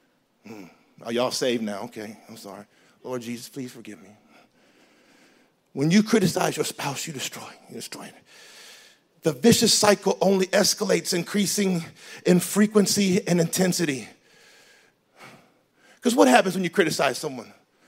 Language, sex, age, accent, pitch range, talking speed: English, male, 40-59, American, 190-250 Hz, 135 wpm